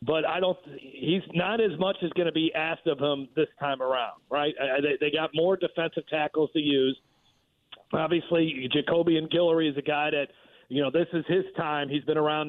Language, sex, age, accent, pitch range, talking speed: English, male, 40-59, American, 145-160 Hz, 200 wpm